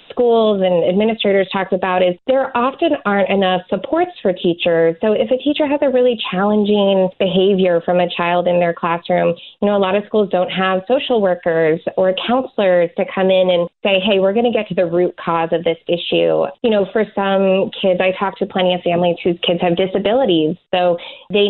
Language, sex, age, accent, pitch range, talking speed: English, female, 20-39, American, 175-220 Hz, 205 wpm